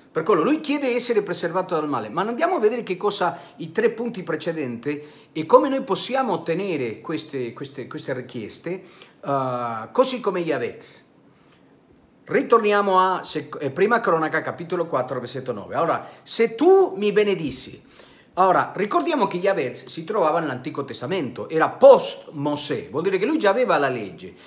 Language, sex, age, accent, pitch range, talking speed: Italian, male, 50-69, native, 145-230 Hz, 155 wpm